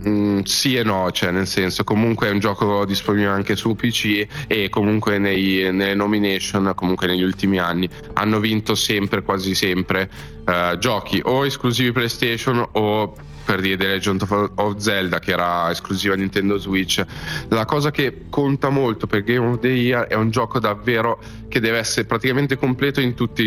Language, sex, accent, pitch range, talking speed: Italian, male, native, 95-115 Hz, 175 wpm